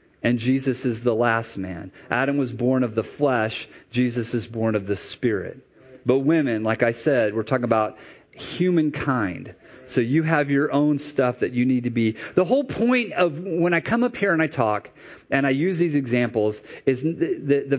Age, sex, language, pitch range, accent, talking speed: 30-49, male, English, 125-165 Hz, American, 200 wpm